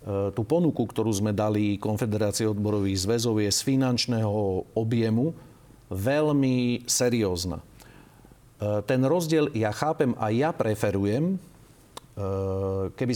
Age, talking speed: 40-59, 100 wpm